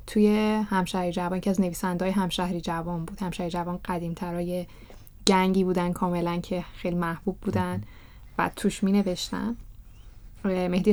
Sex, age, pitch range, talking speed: female, 10-29, 175-205 Hz, 125 wpm